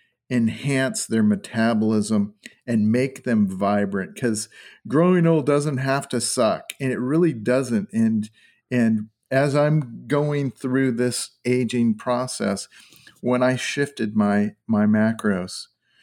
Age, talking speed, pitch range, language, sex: 50-69, 125 wpm, 105-150 Hz, English, male